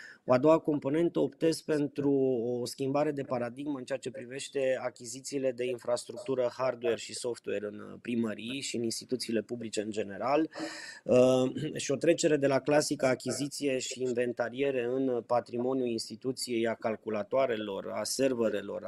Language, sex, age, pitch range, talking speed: Romanian, male, 20-39, 115-130 Hz, 140 wpm